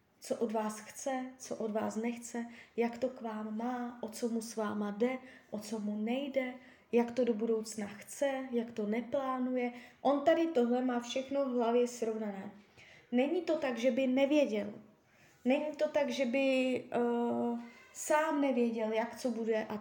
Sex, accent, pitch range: female, native, 220-255 Hz